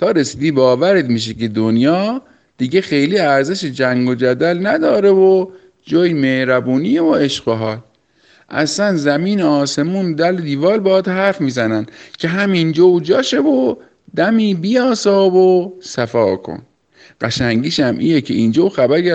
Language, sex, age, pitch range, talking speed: Persian, male, 50-69, 135-190 Hz, 145 wpm